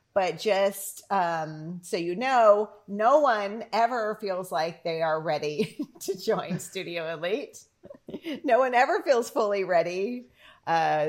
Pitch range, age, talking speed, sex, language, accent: 165-215 Hz, 40-59, 135 wpm, female, English, American